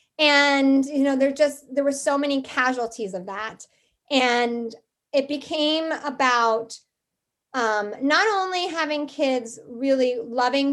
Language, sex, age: English, female, 30-49